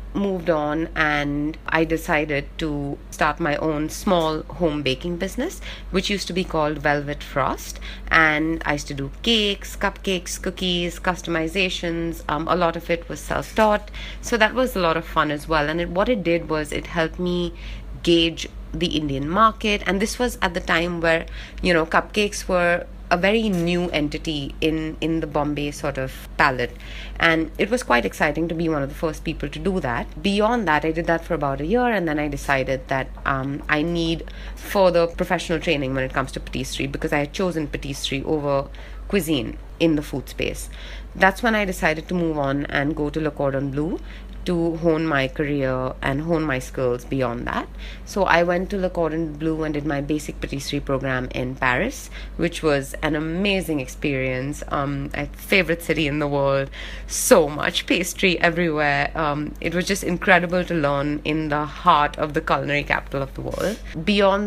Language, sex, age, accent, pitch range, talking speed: English, female, 30-49, Indian, 145-175 Hz, 190 wpm